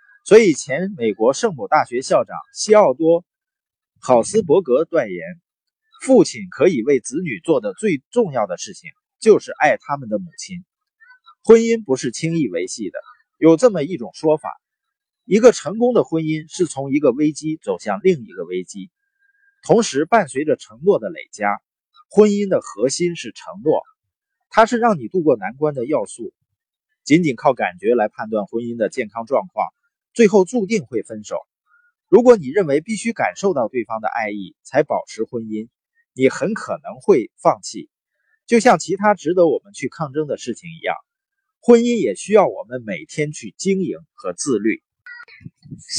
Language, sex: Chinese, male